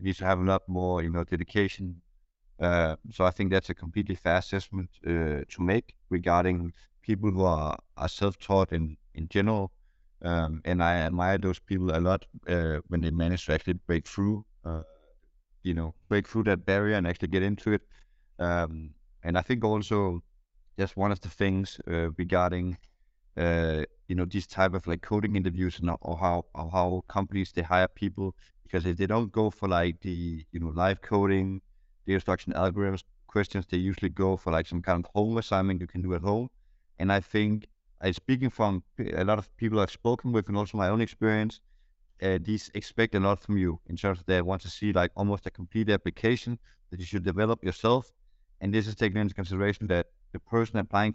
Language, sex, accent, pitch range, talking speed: English, male, Danish, 85-100 Hz, 200 wpm